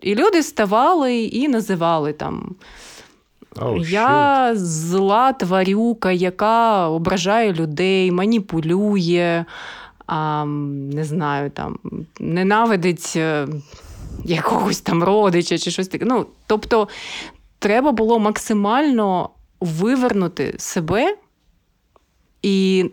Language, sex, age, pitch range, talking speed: Ukrainian, female, 30-49, 180-225 Hz, 75 wpm